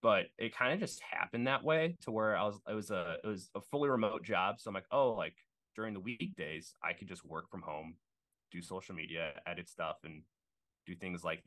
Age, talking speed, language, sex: 20-39, 230 wpm, English, male